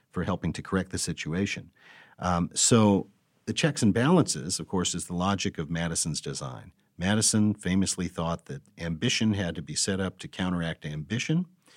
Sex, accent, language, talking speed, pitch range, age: male, American, English, 170 wpm, 90-125 Hz, 50-69